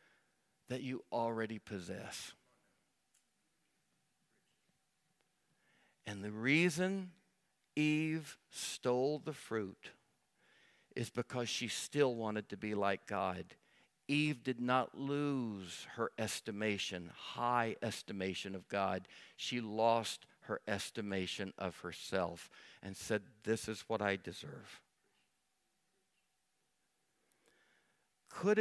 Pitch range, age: 110-155 Hz, 60-79